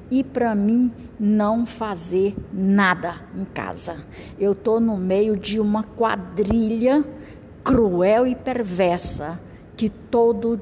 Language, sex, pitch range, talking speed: Portuguese, female, 185-240 Hz, 115 wpm